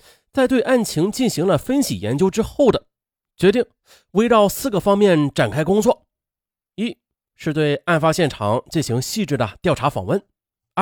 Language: Chinese